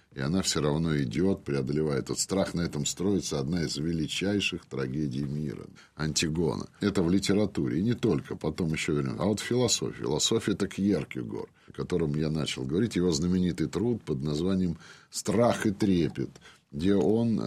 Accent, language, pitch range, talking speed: native, Russian, 75-100 Hz, 170 wpm